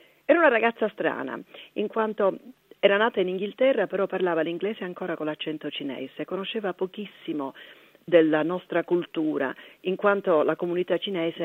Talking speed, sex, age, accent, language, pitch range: 140 wpm, female, 40-59, native, Italian, 155-200 Hz